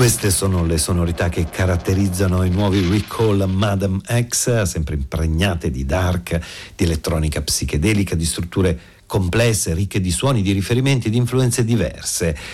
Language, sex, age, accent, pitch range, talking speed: Italian, male, 50-69, native, 85-110 Hz, 140 wpm